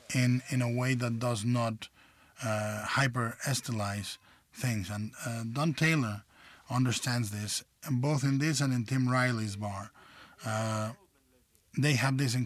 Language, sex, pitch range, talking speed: English, male, 110-130 Hz, 150 wpm